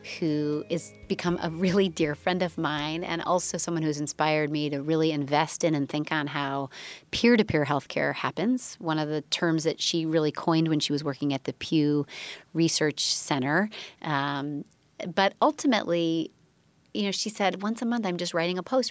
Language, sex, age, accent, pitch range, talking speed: English, female, 30-49, American, 155-190 Hz, 190 wpm